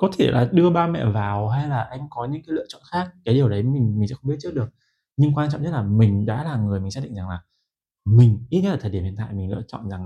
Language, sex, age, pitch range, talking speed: Vietnamese, male, 20-39, 100-130 Hz, 310 wpm